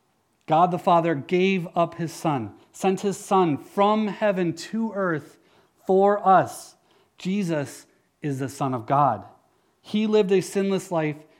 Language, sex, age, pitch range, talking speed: English, male, 30-49, 135-185 Hz, 140 wpm